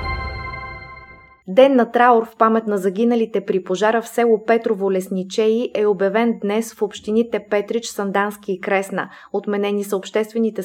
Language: Bulgarian